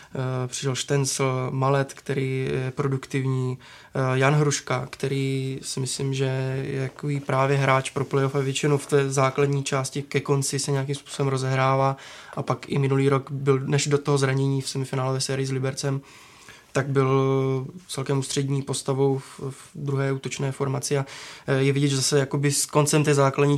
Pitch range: 135-145 Hz